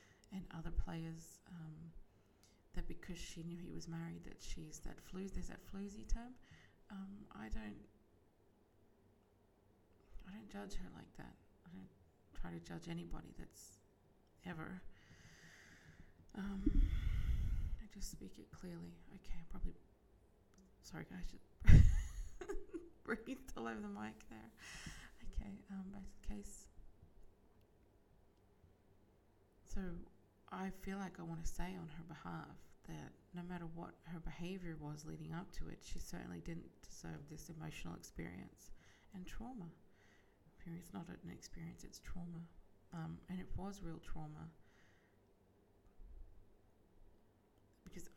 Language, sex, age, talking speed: English, female, 20-39, 130 wpm